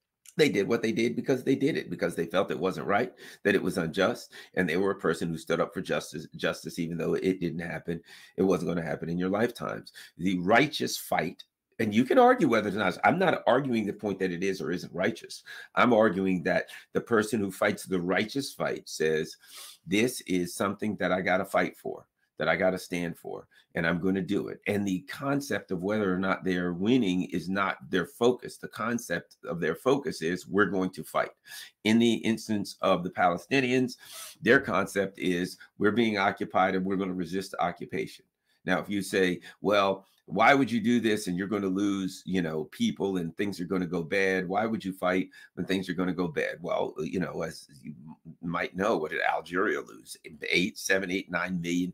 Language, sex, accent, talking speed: English, male, American, 220 wpm